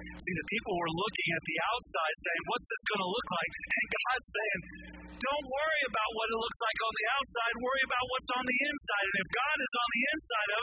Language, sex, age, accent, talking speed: English, male, 50-69, American, 235 wpm